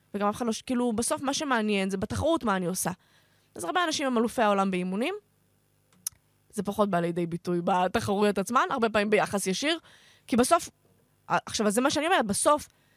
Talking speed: 175 wpm